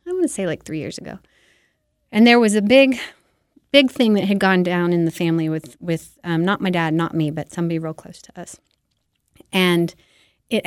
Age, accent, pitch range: 30-49, American, 170-205 Hz